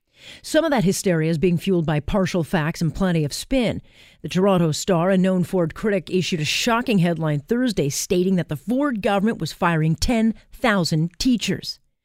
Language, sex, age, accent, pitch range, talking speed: English, female, 40-59, American, 160-205 Hz, 175 wpm